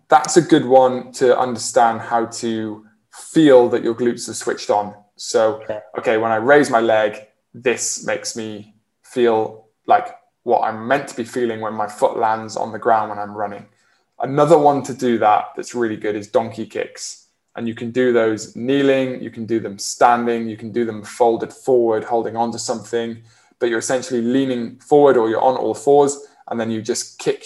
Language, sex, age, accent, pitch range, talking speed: English, male, 20-39, British, 110-130 Hz, 195 wpm